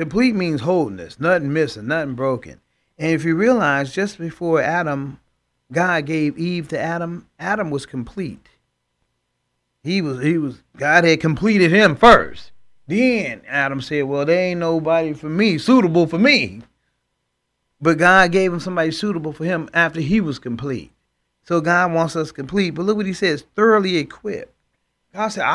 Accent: American